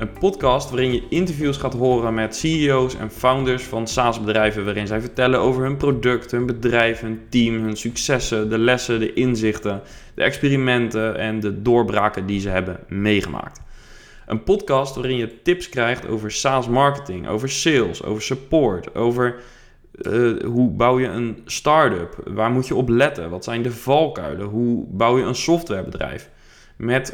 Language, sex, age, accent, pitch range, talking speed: Dutch, male, 20-39, Dutch, 105-130 Hz, 165 wpm